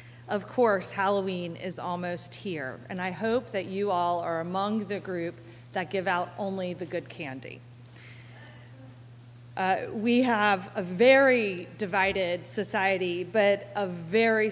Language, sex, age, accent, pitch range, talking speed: English, female, 40-59, American, 135-215 Hz, 135 wpm